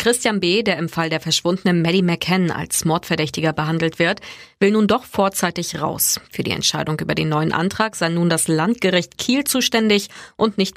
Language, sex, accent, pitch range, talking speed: German, female, German, 160-205 Hz, 185 wpm